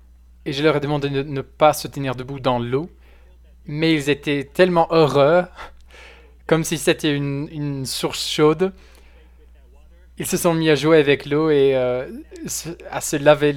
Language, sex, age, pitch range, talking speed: French, male, 20-39, 110-150 Hz, 170 wpm